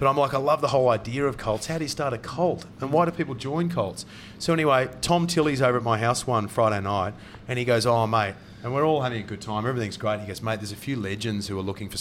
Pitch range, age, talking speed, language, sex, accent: 105-130 Hz, 30-49, 290 wpm, English, male, Australian